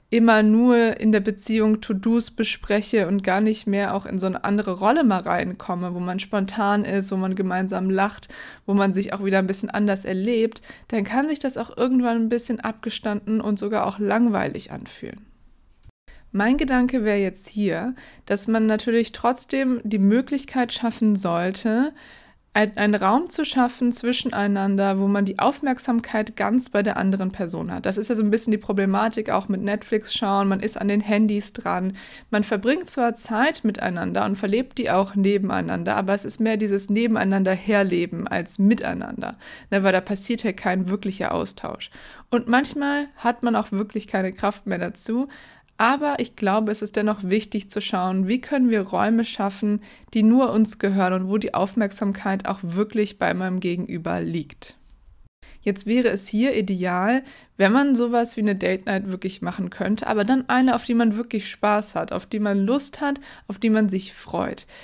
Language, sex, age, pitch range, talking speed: German, female, 20-39, 200-235 Hz, 180 wpm